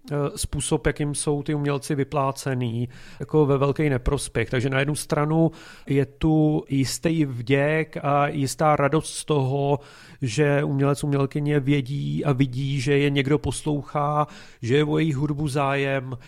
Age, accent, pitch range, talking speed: 40-59, native, 130-145 Hz, 145 wpm